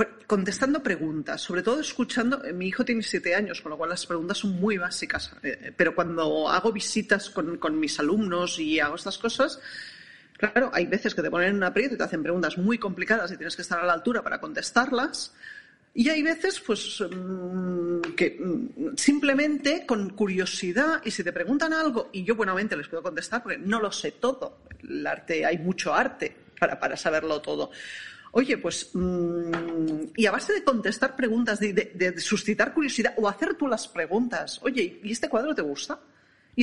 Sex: female